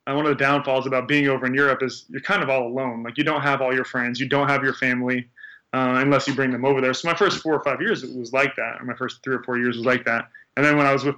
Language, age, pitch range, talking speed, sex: English, 20-39, 125-140 Hz, 335 wpm, male